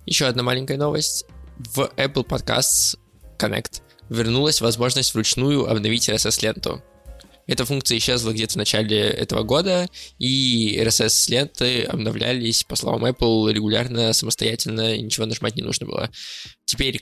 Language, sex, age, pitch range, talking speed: Russian, male, 20-39, 110-125 Hz, 125 wpm